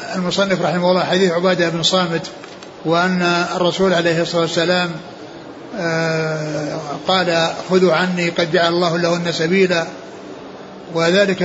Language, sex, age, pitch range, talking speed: Arabic, male, 60-79, 175-200 Hz, 110 wpm